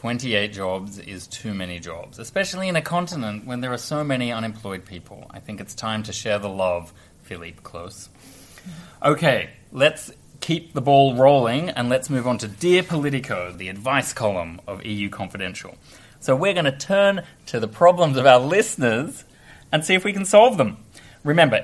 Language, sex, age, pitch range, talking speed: English, male, 20-39, 100-135 Hz, 180 wpm